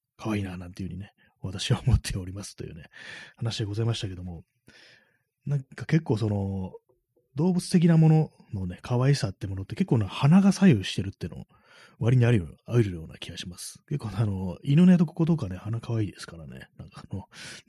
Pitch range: 100-135 Hz